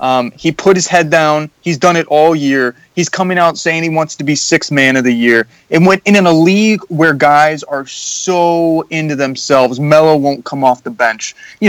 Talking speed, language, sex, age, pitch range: 215 wpm, English, male, 20-39, 130-160 Hz